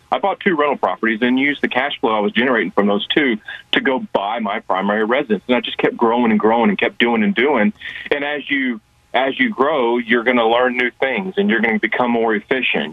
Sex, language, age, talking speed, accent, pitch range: male, English, 40-59, 245 wpm, American, 105-125 Hz